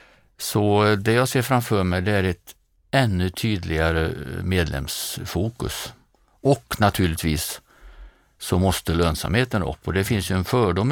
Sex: male